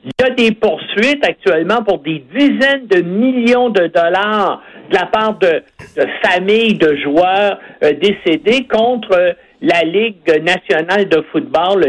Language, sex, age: French, male, 60-79